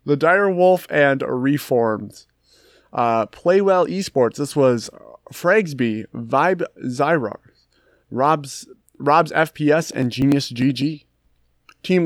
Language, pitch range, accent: English, 125-165 Hz, American